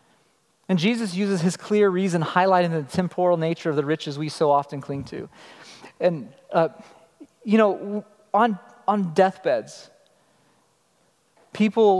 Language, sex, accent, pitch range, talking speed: English, male, American, 165-205 Hz, 130 wpm